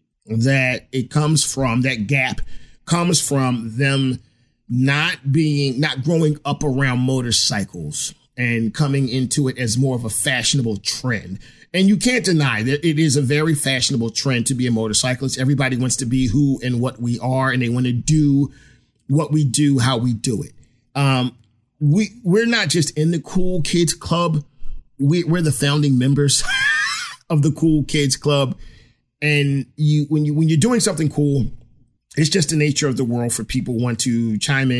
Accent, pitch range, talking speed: American, 125-160 Hz, 180 wpm